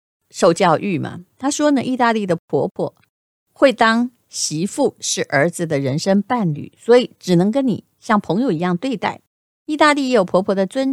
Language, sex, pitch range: Chinese, female, 165-230 Hz